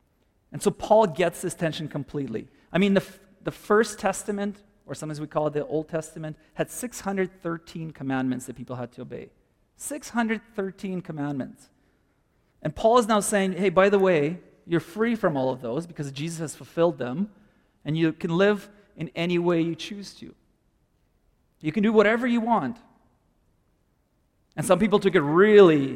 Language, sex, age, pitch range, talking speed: English, male, 40-59, 150-195 Hz, 170 wpm